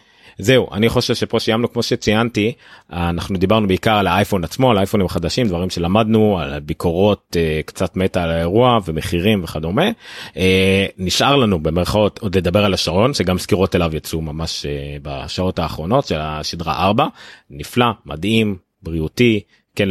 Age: 30-49